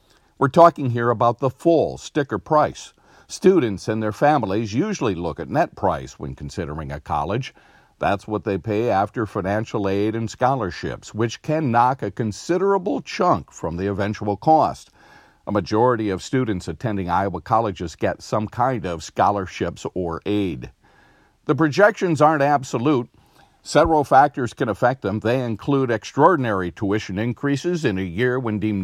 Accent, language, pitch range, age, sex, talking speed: American, English, 100-130 Hz, 50-69, male, 150 wpm